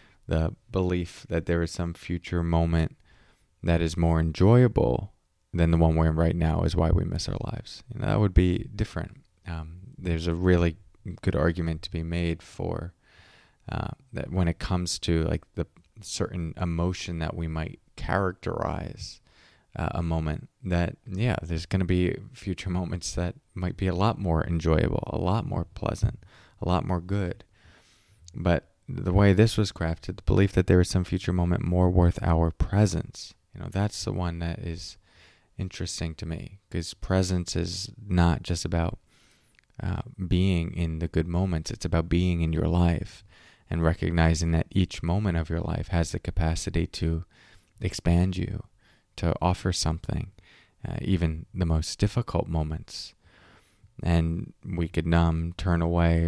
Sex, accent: male, American